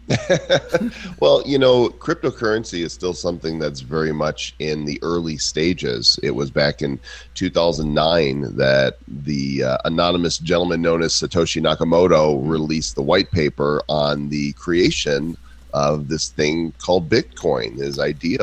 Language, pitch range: English, 70-85 Hz